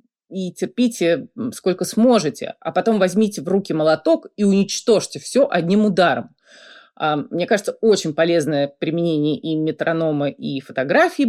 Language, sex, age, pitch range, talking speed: Russian, female, 30-49, 160-225 Hz, 130 wpm